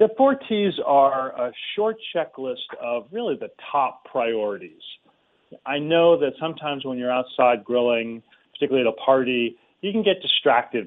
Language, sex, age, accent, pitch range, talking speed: English, male, 40-59, American, 120-155 Hz, 155 wpm